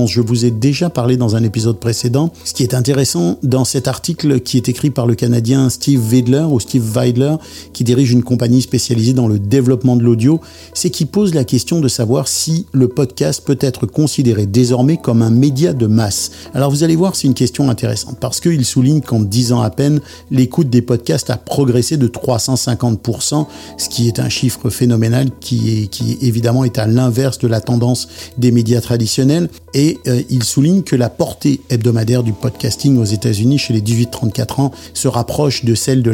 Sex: male